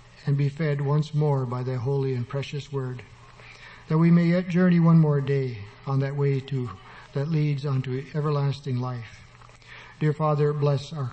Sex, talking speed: male, 175 wpm